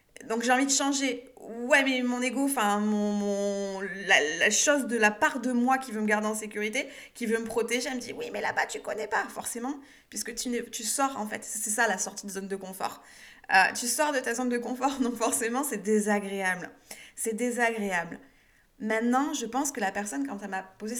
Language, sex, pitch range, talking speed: French, female, 185-240 Hz, 225 wpm